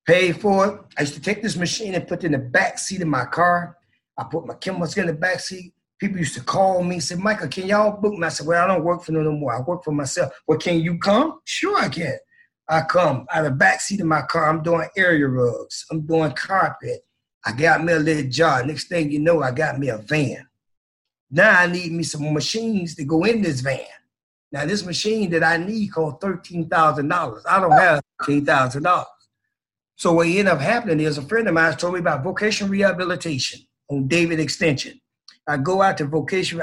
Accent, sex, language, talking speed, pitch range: American, male, English, 225 wpm, 145-180 Hz